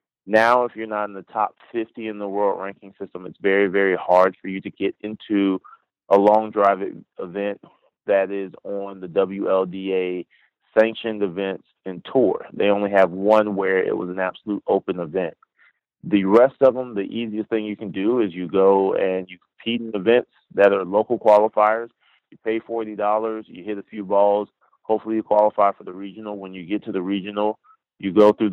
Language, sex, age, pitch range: English, male, 30-49, 95-110 Hz